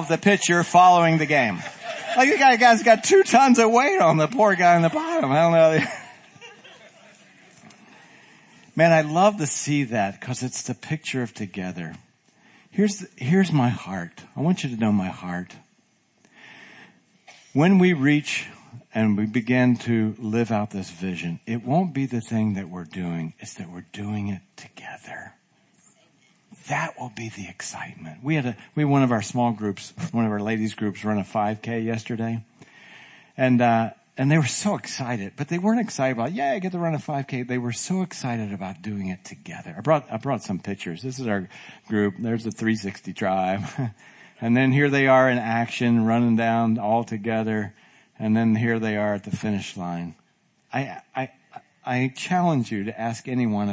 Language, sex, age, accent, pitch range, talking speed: English, male, 50-69, American, 105-150 Hz, 190 wpm